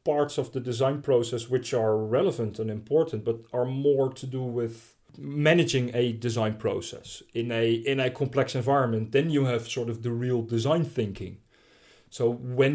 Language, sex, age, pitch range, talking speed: English, male, 40-59, 110-125 Hz, 175 wpm